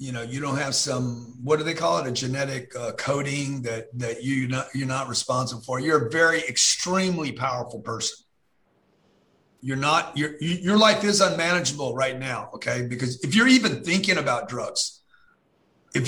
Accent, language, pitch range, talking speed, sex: American, English, 135-180 Hz, 180 wpm, male